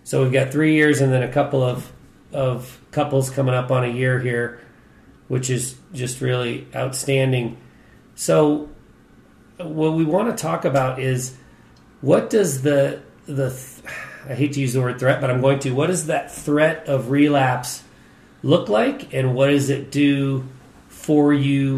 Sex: male